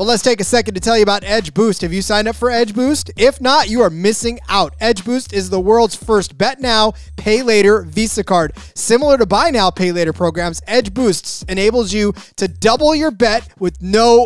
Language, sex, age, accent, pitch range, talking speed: English, male, 20-39, American, 175-230 Hz, 225 wpm